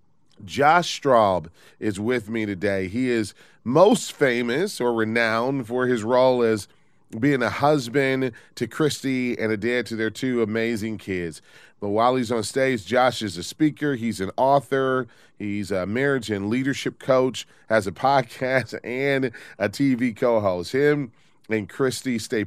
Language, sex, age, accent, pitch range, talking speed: English, male, 30-49, American, 105-135 Hz, 155 wpm